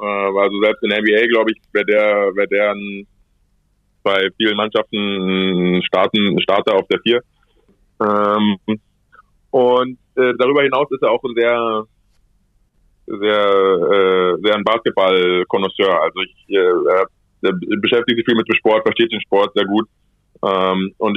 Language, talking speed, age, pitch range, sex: German, 135 wpm, 20-39, 95-115 Hz, male